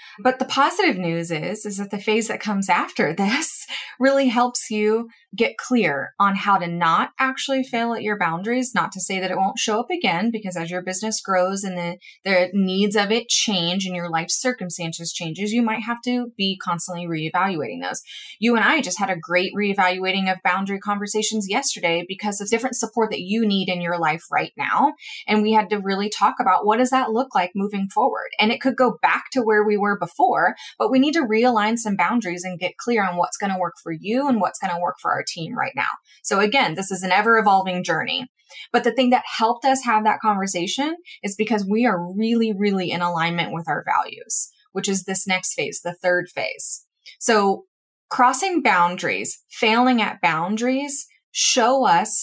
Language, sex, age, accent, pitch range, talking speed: English, female, 20-39, American, 185-235 Hz, 205 wpm